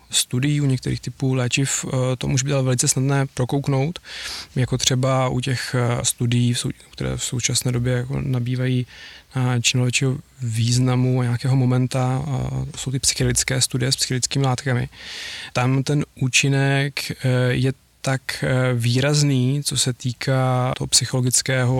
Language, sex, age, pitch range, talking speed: Czech, male, 20-39, 125-140 Hz, 125 wpm